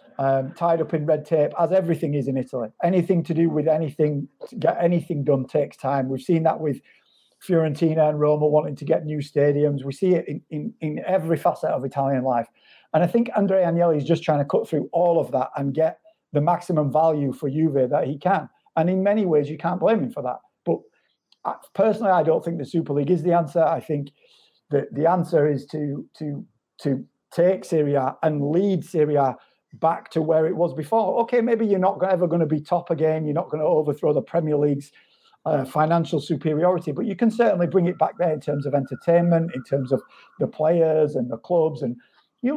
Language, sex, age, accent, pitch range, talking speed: English, male, 40-59, British, 145-175 Hz, 215 wpm